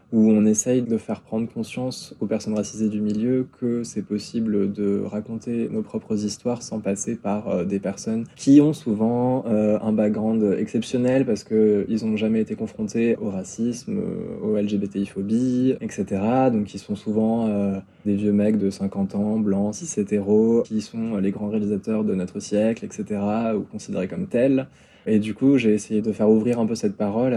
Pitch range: 105-115 Hz